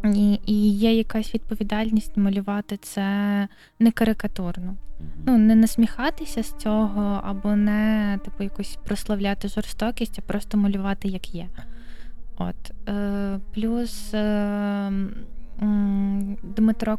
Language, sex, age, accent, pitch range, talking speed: Ukrainian, female, 20-39, native, 200-215 Hz, 95 wpm